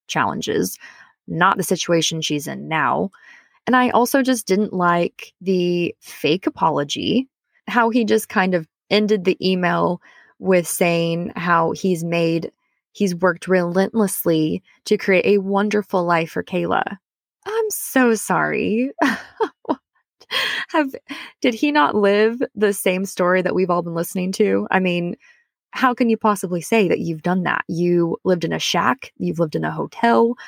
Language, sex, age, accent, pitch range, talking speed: English, female, 20-39, American, 175-220 Hz, 150 wpm